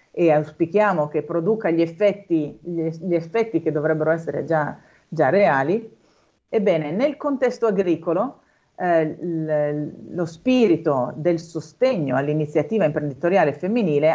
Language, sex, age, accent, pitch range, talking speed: Italian, female, 50-69, native, 155-205 Hz, 105 wpm